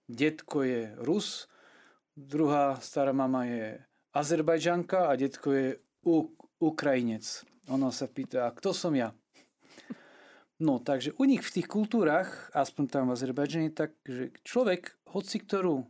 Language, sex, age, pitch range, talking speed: Slovak, male, 40-59, 125-170 Hz, 130 wpm